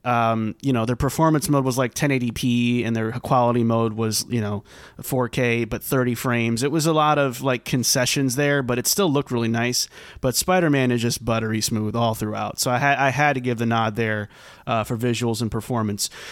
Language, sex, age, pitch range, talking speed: English, male, 30-49, 115-145 Hz, 210 wpm